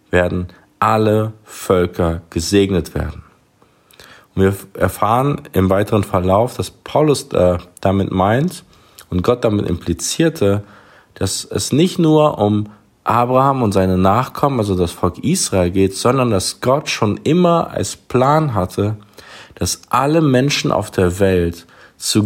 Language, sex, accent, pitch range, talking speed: German, male, German, 90-115 Hz, 125 wpm